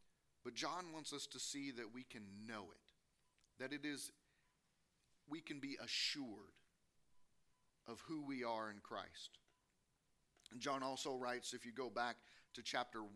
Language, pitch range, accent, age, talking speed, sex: English, 125-165 Hz, American, 40-59, 155 wpm, male